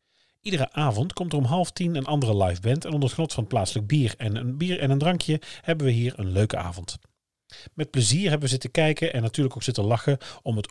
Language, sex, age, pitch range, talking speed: Dutch, male, 40-59, 110-140 Hz, 240 wpm